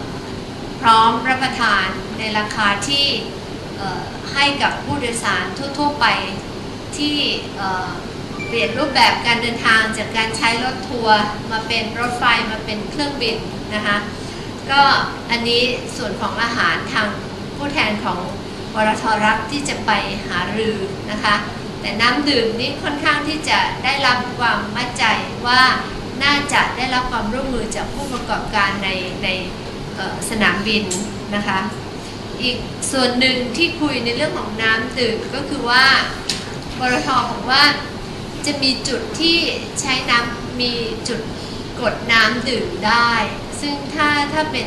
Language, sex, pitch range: Thai, female, 210-255 Hz